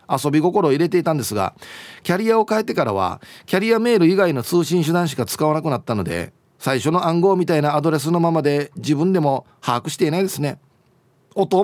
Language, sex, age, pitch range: Japanese, male, 40-59, 125-180 Hz